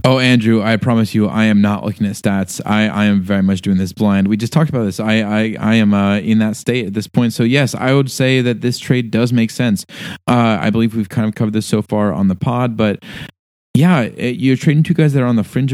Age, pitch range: 20-39, 100-120 Hz